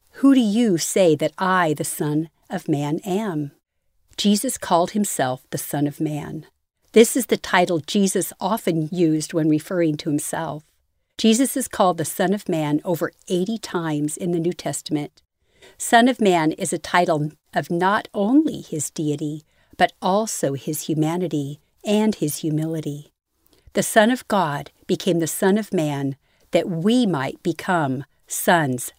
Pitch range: 150-195 Hz